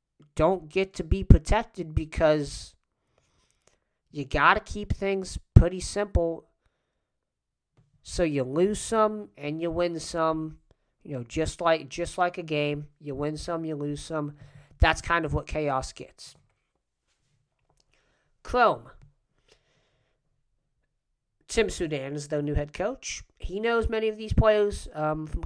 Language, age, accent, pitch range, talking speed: English, 40-59, American, 140-170 Hz, 130 wpm